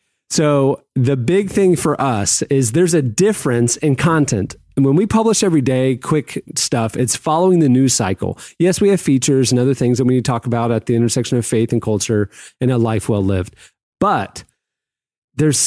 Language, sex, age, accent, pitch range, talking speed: English, male, 30-49, American, 115-150 Hz, 200 wpm